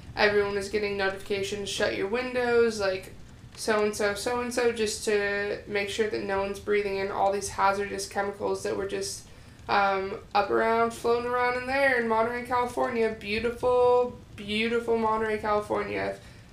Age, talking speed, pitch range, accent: 20-39, 165 wpm, 195-215 Hz, American